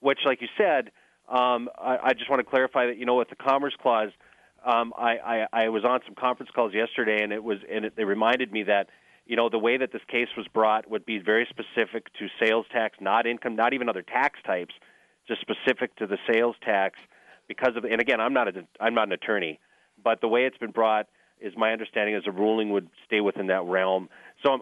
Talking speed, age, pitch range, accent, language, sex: 230 wpm, 30-49, 105-120 Hz, American, English, male